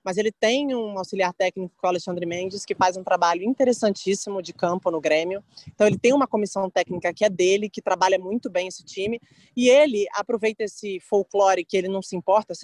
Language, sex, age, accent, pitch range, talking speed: Portuguese, female, 20-39, Brazilian, 190-230 Hz, 215 wpm